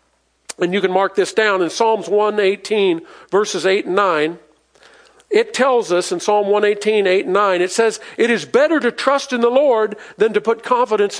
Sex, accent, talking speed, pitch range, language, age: male, American, 195 wpm, 200-255 Hz, English, 50-69